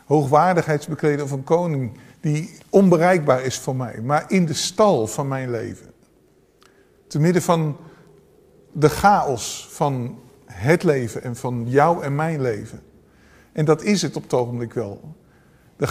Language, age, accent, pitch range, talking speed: English, 50-69, Dutch, 130-170 Hz, 140 wpm